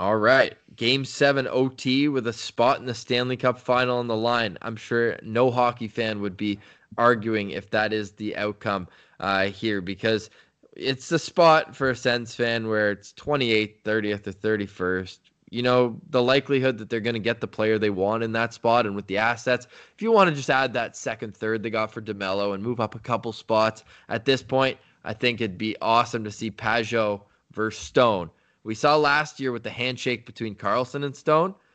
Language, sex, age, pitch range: English, male, 20-39, 105-125 Hz